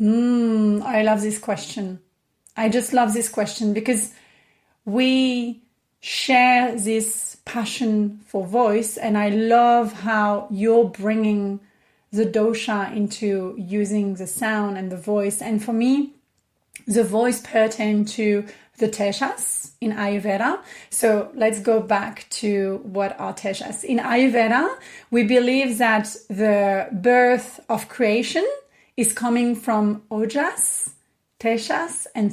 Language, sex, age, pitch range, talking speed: English, female, 30-49, 210-245 Hz, 125 wpm